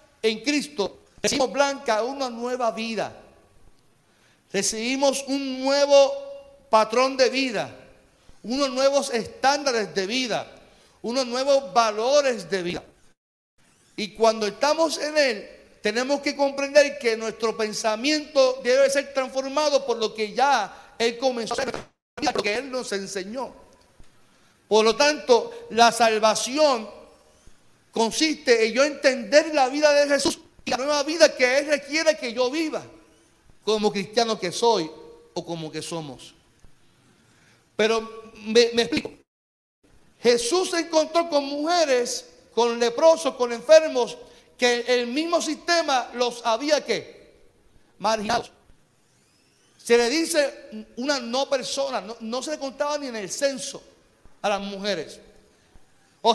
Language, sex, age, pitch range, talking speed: Spanish, male, 50-69, 225-290 Hz, 130 wpm